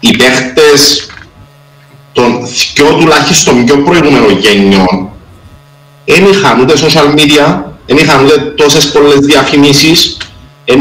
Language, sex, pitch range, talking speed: Greek, male, 120-150 Hz, 110 wpm